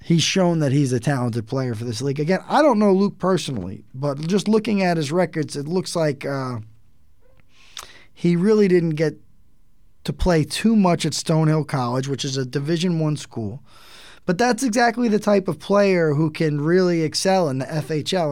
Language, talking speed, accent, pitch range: English, 185 wpm, American, 135-180 Hz